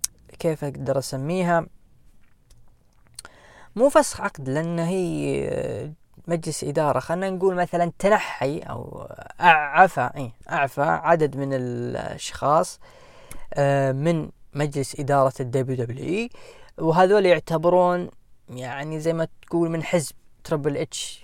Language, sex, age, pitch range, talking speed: Arabic, female, 20-39, 140-180 Hz, 100 wpm